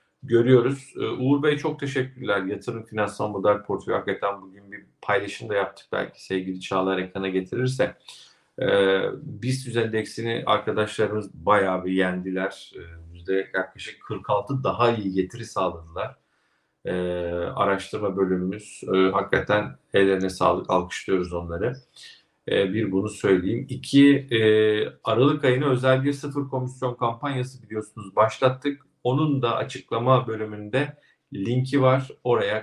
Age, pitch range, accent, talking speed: 50-69, 95-130 Hz, native, 120 wpm